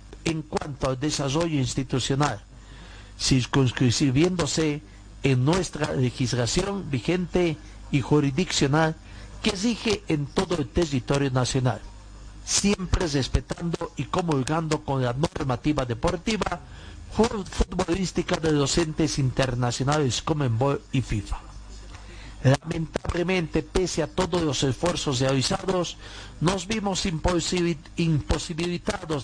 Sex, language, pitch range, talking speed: male, Spanish, 130-175 Hz, 95 wpm